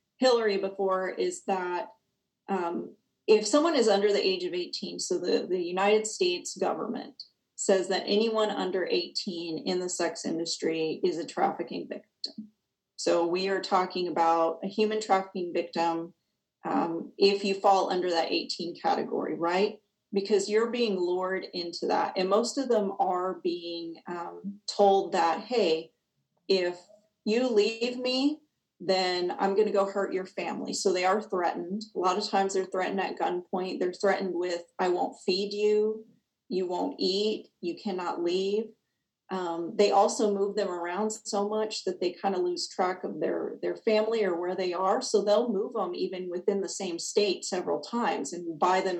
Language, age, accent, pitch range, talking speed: English, 40-59, American, 175-210 Hz, 170 wpm